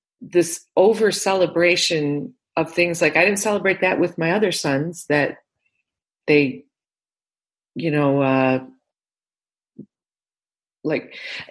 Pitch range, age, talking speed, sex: 150-210 Hz, 40-59, 105 wpm, female